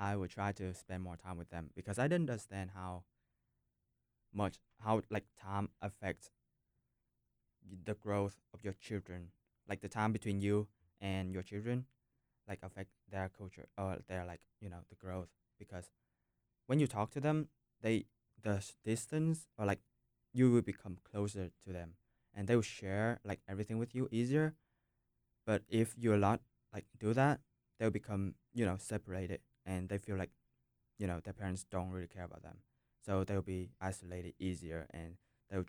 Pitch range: 90-105 Hz